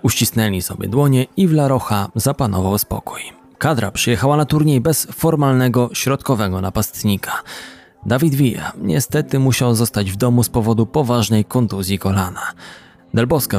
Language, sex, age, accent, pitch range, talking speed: Polish, male, 20-39, native, 100-140 Hz, 130 wpm